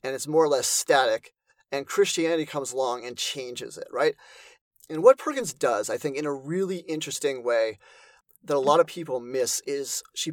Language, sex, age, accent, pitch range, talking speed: English, male, 30-49, American, 140-200 Hz, 190 wpm